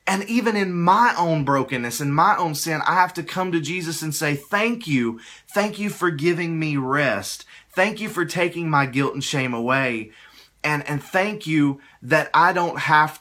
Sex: male